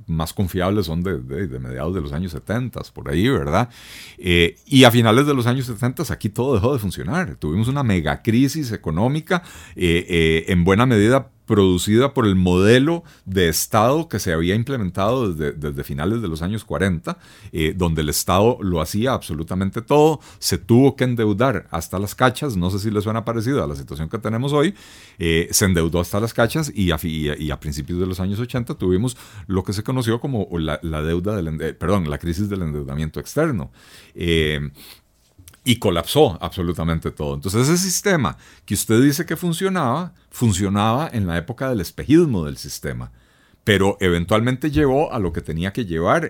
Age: 40-59